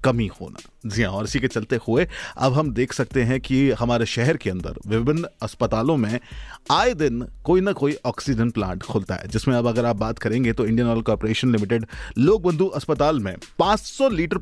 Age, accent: 30-49, native